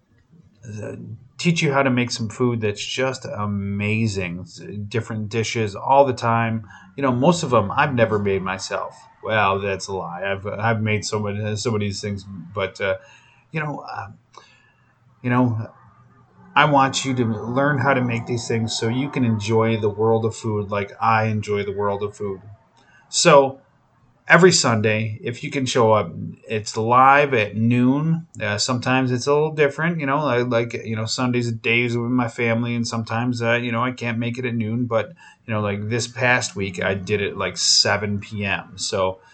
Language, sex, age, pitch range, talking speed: English, male, 30-49, 105-125 Hz, 190 wpm